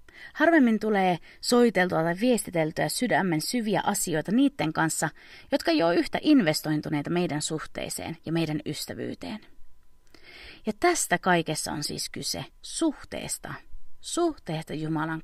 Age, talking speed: 30-49, 110 wpm